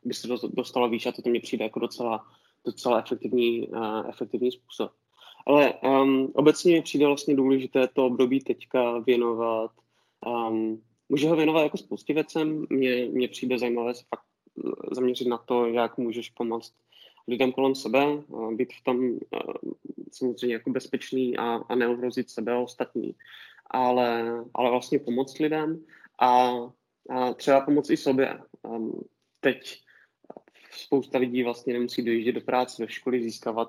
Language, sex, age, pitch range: Czech, male, 20-39, 120-130 Hz